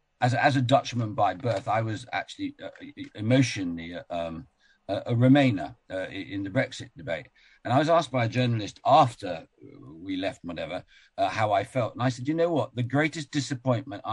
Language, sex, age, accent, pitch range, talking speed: English, male, 50-69, British, 110-140 Hz, 185 wpm